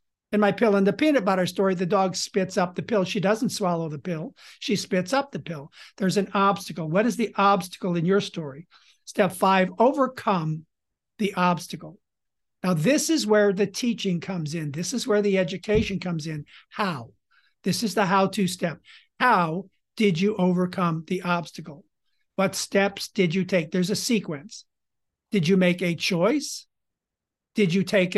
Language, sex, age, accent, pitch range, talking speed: English, male, 60-79, American, 175-205 Hz, 175 wpm